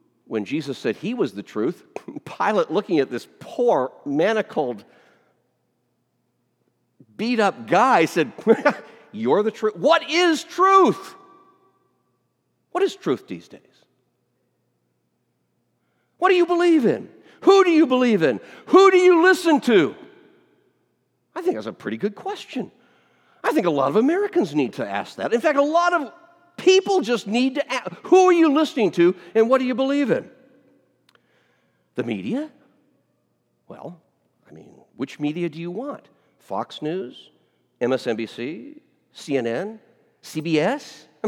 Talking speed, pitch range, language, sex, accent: 140 wpm, 205-345 Hz, English, male, American